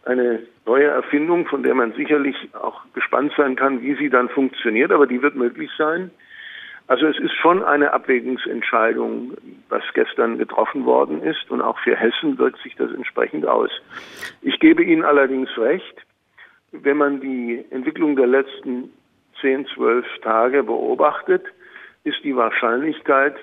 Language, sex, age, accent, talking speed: German, male, 50-69, German, 150 wpm